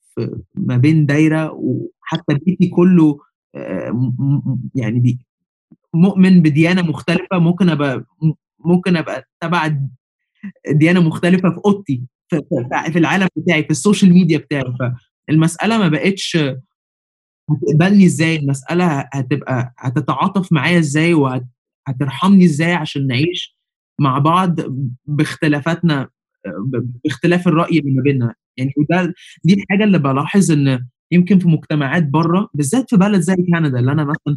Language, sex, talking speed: Arabic, male, 115 wpm